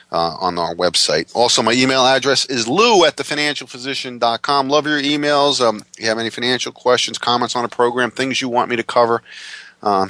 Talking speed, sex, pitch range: 215 wpm, male, 95-125 Hz